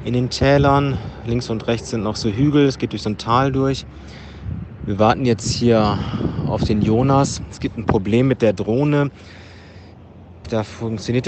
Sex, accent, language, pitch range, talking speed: male, German, German, 105-125 Hz, 175 wpm